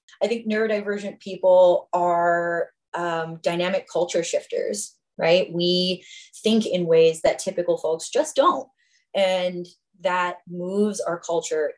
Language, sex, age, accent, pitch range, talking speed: English, female, 20-39, American, 170-205 Hz, 120 wpm